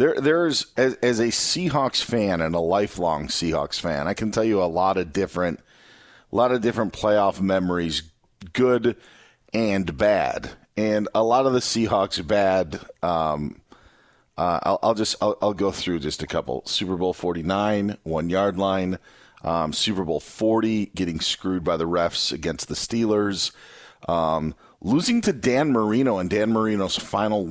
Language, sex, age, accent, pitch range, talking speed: English, male, 40-59, American, 85-105 Hz, 165 wpm